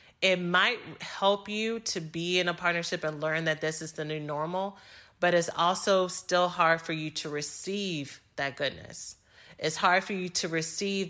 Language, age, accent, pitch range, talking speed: English, 30-49, American, 155-185 Hz, 185 wpm